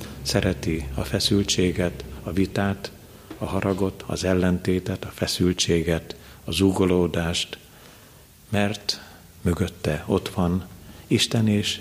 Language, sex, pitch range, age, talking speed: Hungarian, male, 85-105 Hz, 50-69, 95 wpm